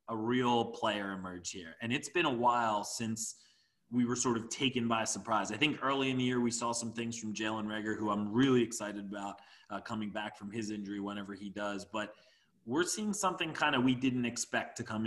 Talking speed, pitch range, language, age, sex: 225 wpm, 105-120 Hz, English, 20-39, male